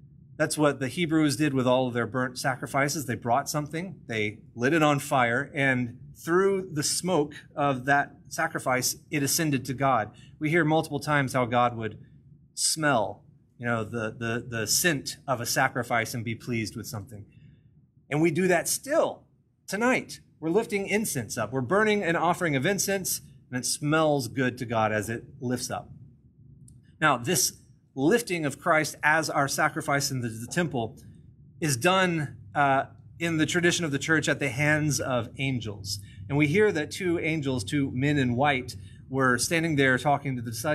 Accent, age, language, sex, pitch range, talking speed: American, 30-49, English, male, 125-155 Hz, 175 wpm